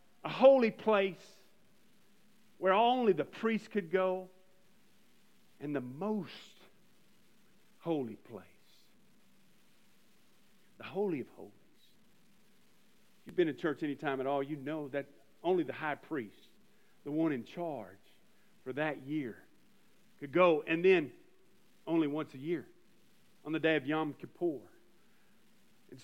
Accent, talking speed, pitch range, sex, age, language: American, 130 wpm, 180-220 Hz, male, 50-69, English